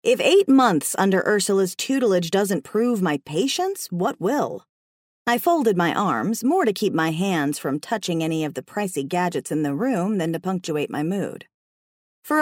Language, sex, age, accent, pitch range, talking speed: English, female, 40-59, American, 170-245 Hz, 180 wpm